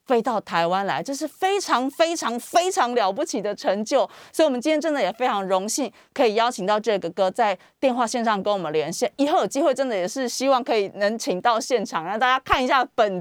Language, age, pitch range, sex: Chinese, 30-49, 205-295 Hz, female